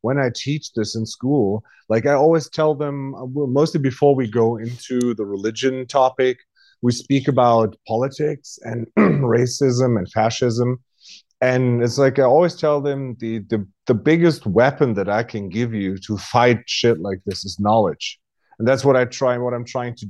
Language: English